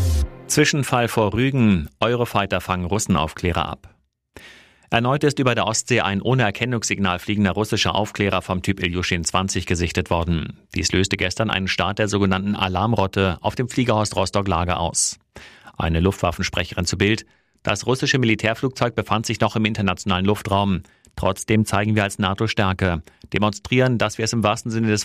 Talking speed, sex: 155 wpm, male